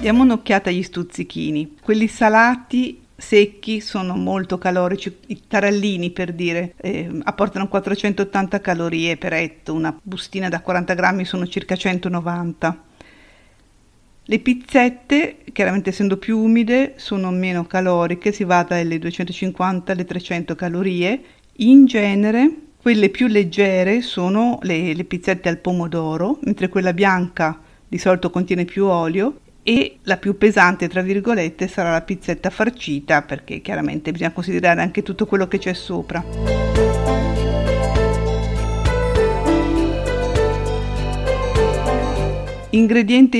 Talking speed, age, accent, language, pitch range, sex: 115 wpm, 50-69, native, Italian, 170-205 Hz, female